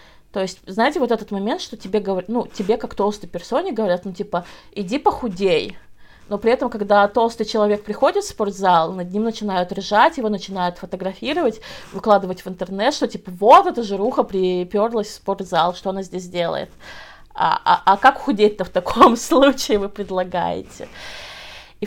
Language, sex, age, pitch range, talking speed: Russian, female, 20-39, 190-235 Hz, 165 wpm